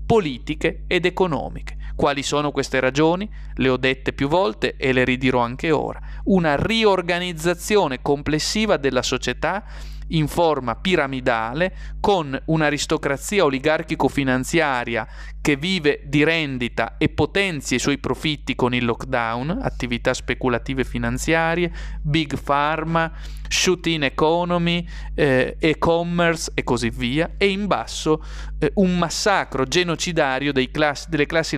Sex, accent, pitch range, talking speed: male, native, 125-165 Hz, 120 wpm